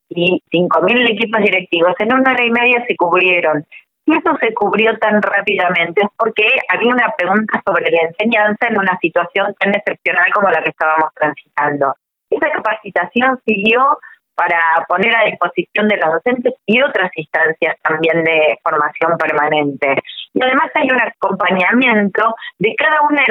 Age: 20-39